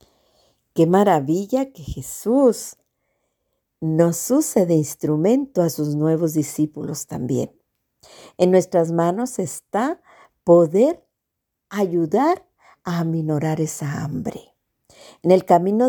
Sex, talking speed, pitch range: female, 100 wpm, 155-205 Hz